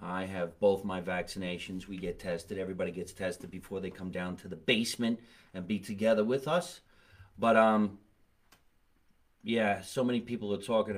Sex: male